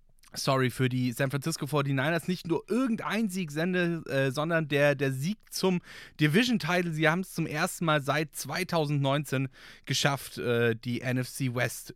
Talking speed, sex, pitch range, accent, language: 155 wpm, male, 135-170 Hz, German, German